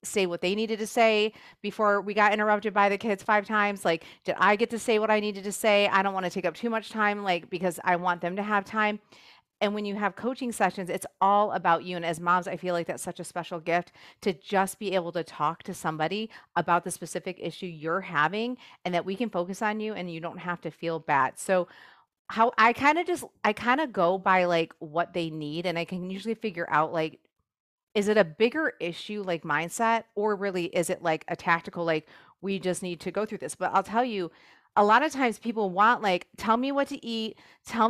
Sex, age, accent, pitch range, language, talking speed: female, 40-59, American, 175-220 Hz, English, 240 wpm